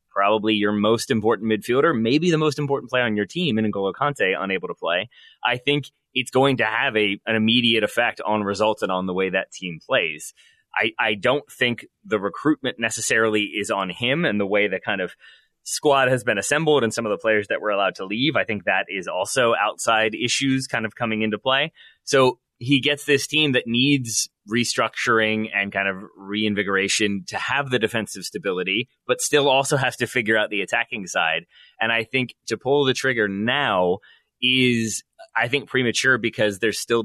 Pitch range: 100-130 Hz